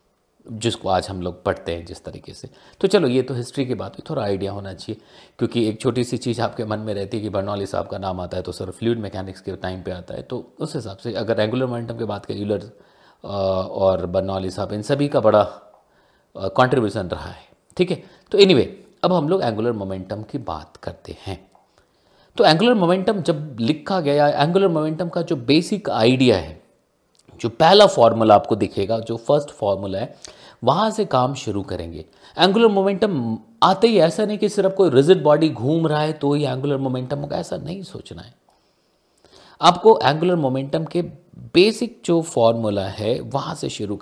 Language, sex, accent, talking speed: Hindi, male, native, 195 wpm